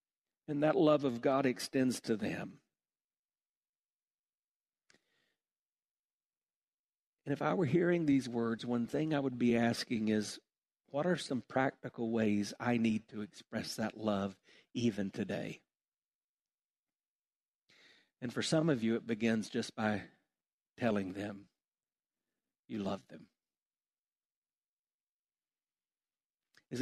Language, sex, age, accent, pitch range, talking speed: English, male, 60-79, American, 115-185 Hz, 110 wpm